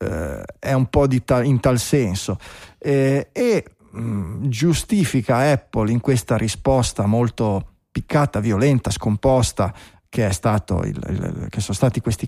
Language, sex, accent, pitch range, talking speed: Italian, male, native, 110-135 Hz, 115 wpm